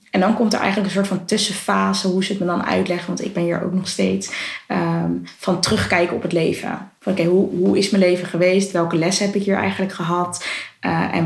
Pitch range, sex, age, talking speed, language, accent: 165-190 Hz, female, 20-39, 225 wpm, Dutch, Dutch